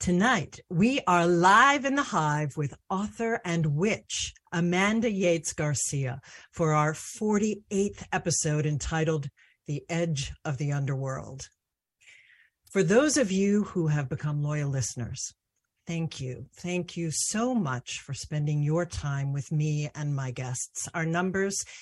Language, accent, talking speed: English, American, 140 wpm